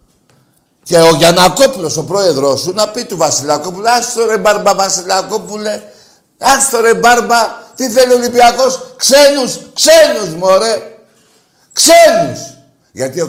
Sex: male